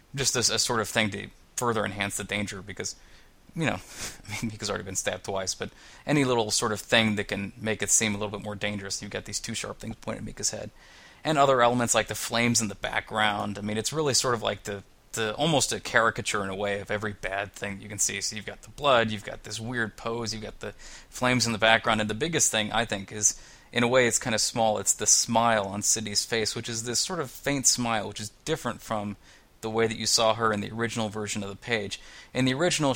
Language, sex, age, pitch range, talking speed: English, male, 20-39, 105-120 Hz, 255 wpm